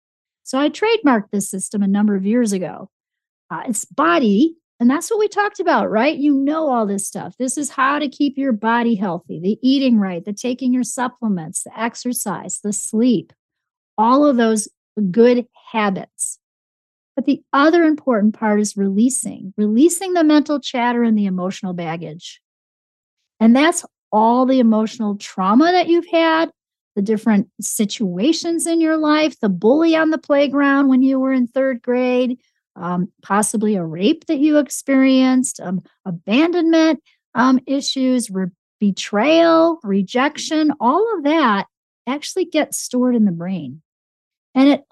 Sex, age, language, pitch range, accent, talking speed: female, 40-59, English, 205-290 Hz, American, 150 wpm